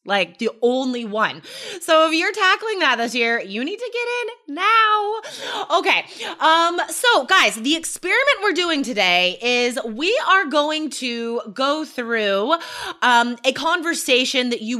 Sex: female